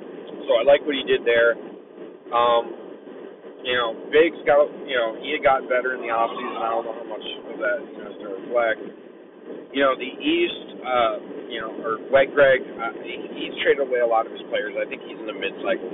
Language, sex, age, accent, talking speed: English, male, 30-49, American, 215 wpm